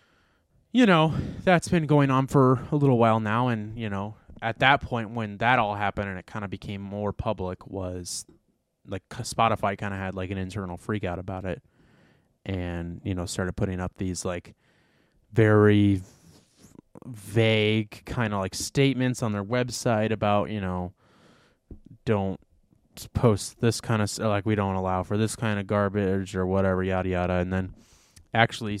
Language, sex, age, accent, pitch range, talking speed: English, male, 20-39, American, 95-115 Hz, 170 wpm